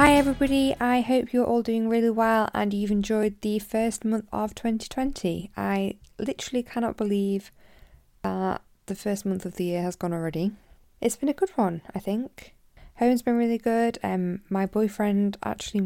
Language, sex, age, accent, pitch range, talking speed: English, female, 10-29, British, 185-230 Hz, 180 wpm